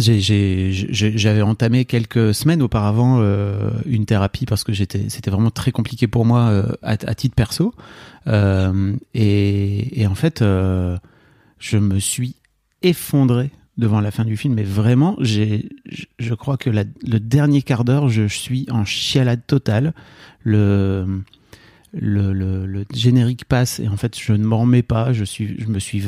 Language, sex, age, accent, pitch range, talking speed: French, male, 30-49, French, 105-130 Hz, 175 wpm